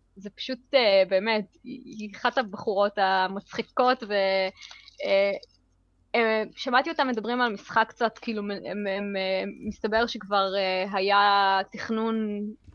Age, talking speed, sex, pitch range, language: 20-39, 100 wpm, female, 195-235 Hz, Hebrew